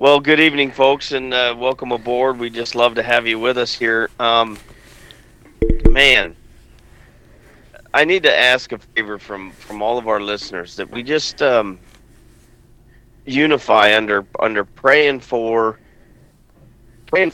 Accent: American